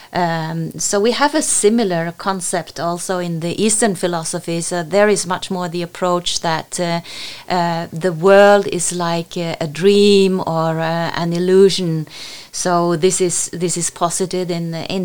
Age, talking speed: 30-49, 165 wpm